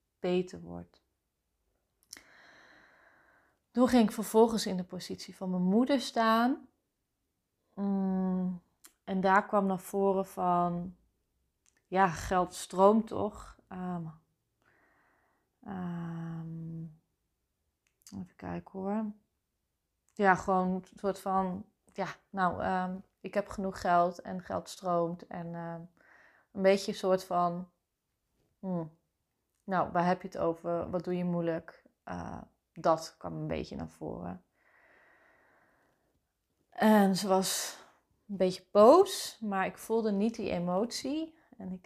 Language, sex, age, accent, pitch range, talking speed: Dutch, female, 30-49, Dutch, 175-210 Hz, 110 wpm